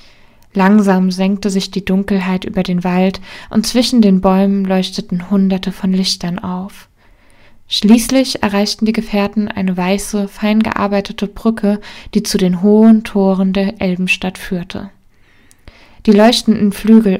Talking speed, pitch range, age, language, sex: 130 wpm, 185-210 Hz, 20-39, German, female